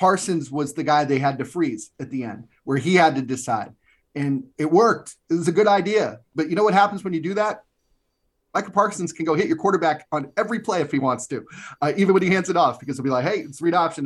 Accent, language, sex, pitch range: American, English, male, 130-170 Hz